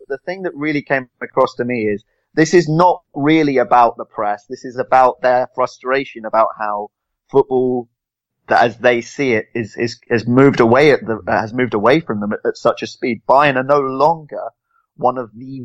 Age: 30-49